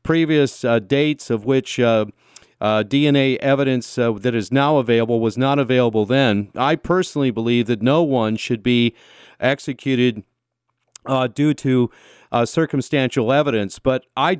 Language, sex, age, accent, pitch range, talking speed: English, male, 40-59, American, 125-170 Hz, 145 wpm